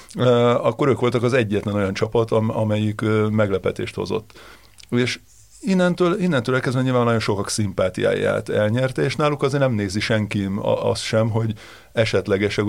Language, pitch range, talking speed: Hungarian, 100-120 Hz, 135 wpm